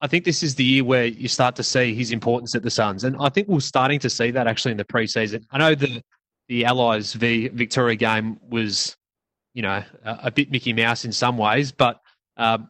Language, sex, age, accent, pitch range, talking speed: English, male, 20-39, Australian, 115-135 Hz, 230 wpm